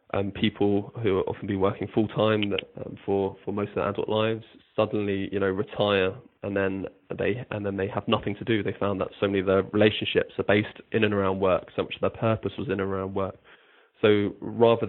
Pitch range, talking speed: 95-105 Hz, 235 wpm